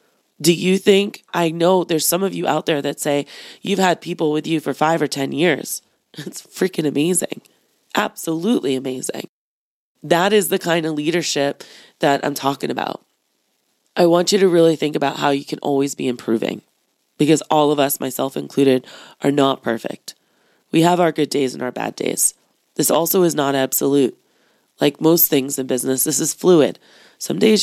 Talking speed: 180 wpm